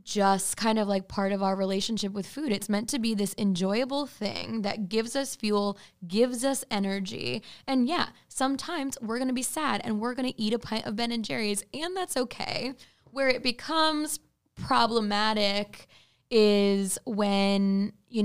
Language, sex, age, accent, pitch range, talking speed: English, female, 10-29, American, 200-250 Hz, 175 wpm